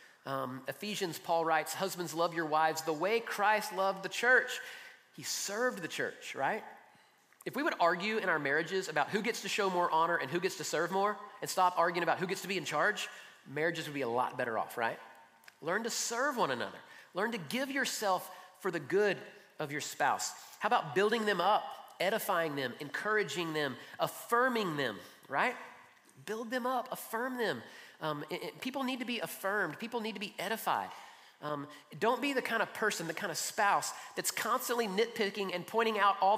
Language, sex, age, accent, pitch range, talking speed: English, male, 30-49, American, 160-225 Hz, 195 wpm